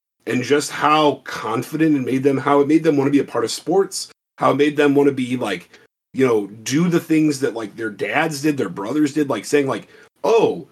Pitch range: 130-160 Hz